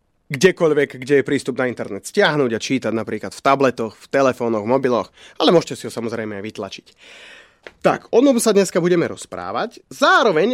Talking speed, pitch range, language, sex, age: 175 wpm, 130-195 Hz, Slovak, male, 30-49